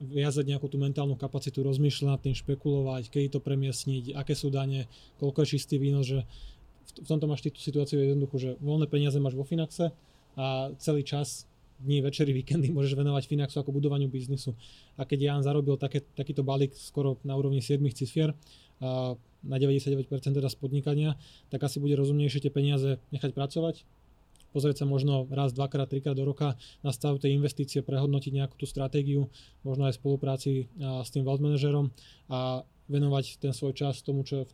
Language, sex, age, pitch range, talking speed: Slovak, male, 20-39, 135-145 Hz, 170 wpm